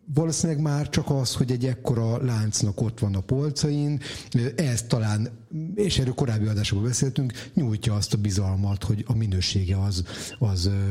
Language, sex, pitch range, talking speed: Hungarian, male, 105-135 Hz, 155 wpm